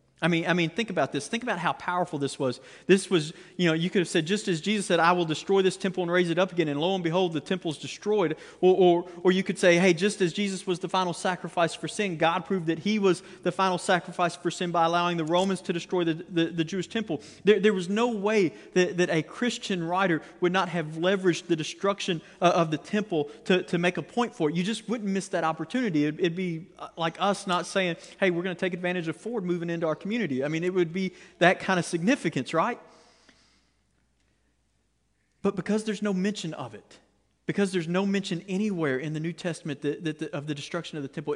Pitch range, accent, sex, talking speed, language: 165-195 Hz, American, male, 235 wpm, English